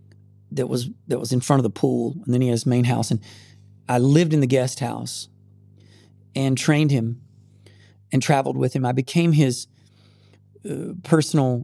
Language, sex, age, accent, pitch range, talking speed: Czech, male, 40-59, American, 105-135 Hz, 175 wpm